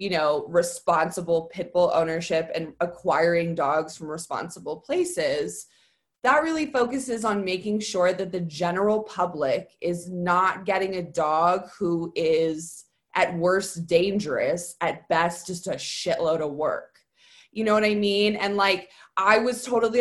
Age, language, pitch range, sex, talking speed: 20-39, English, 175-220 Hz, female, 145 wpm